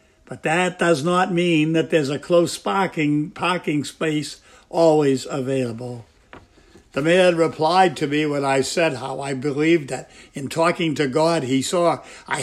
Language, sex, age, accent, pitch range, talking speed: English, male, 60-79, American, 130-175 Hz, 160 wpm